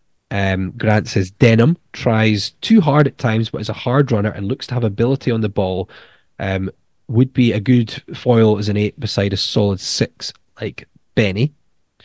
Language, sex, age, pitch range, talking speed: English, male, 20-39, 100-125 Hz, 185 wpm